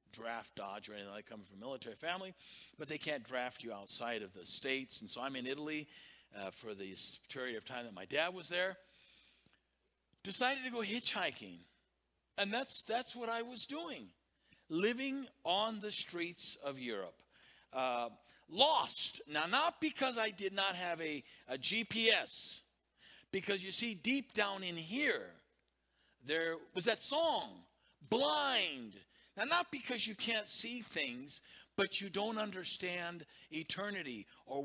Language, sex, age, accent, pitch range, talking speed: English, male, 50-69, American, 130-195 Hz, 150 wpm